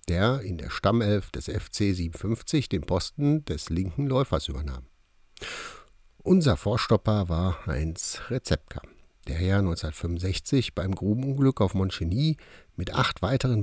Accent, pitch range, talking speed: German, 85-130 Hz, 125 wpm